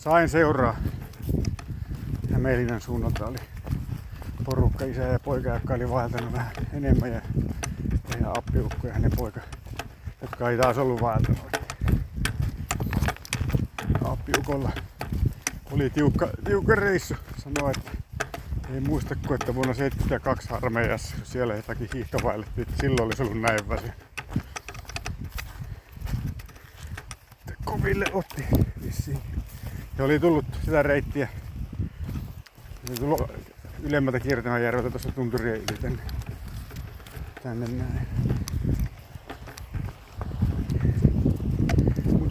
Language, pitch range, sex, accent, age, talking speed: Finnish, 115-135 Hz, male, native, 60-79, 90 wpm